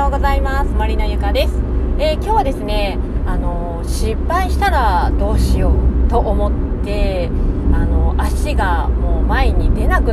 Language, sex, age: Japanese, female, 30-49